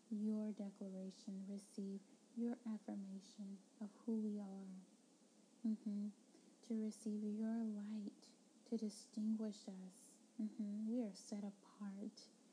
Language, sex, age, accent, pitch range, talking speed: English, female, 10-29, American, 200-240 Hz, 105 wpm